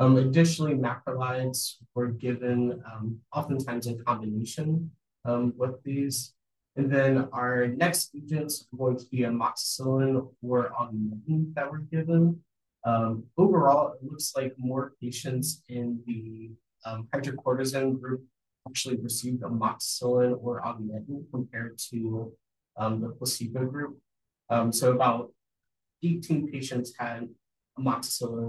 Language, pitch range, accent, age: English, 115-130 Hz, American, 30-49